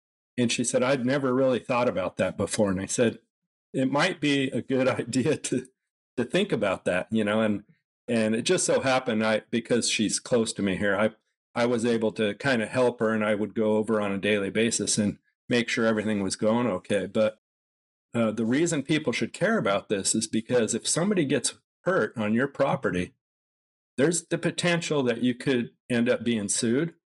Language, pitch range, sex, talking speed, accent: English, 110-135 Hz, male, 205 wpm, American